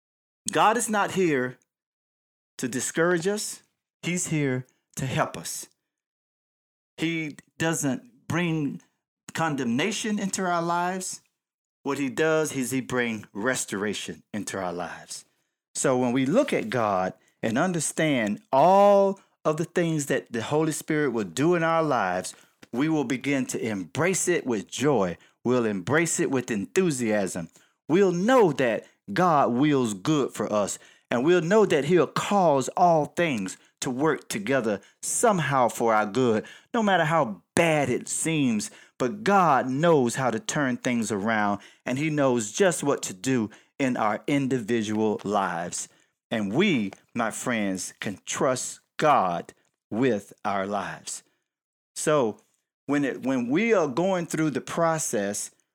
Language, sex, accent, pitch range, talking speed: English, male, American, 125-180 Hz, 140 wpm